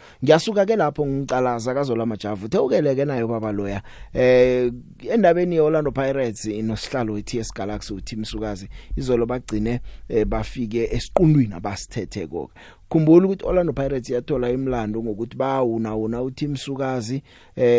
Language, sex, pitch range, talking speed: English, male, 105-135 Hz, 125 wpm